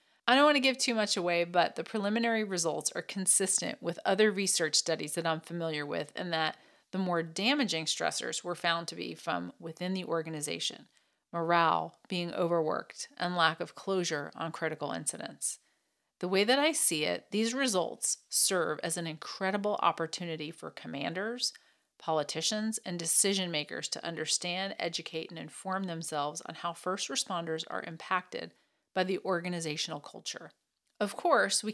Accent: American